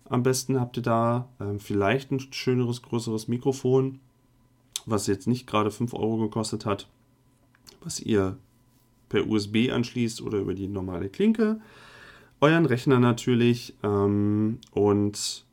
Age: 40-59